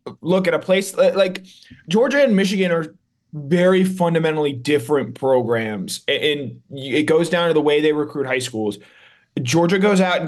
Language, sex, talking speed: English, male, 165 wpm